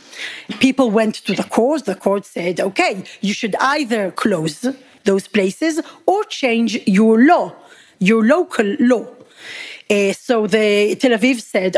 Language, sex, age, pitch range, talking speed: English, female, 40-59, 210-275 Hz, 140 wpm